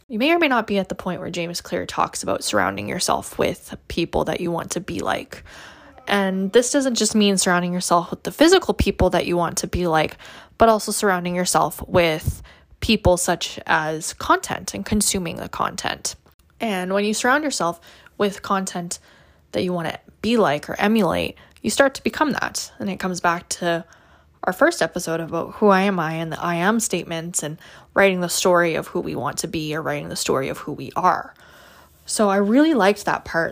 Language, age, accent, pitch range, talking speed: English, 10-29, American, 170-210 Hz, 210 wpm